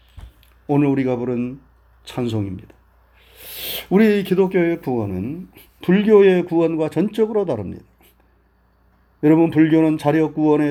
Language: Korean